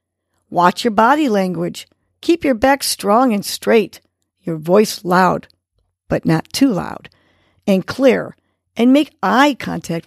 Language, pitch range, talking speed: English, 155-220 Hz, 135 wpm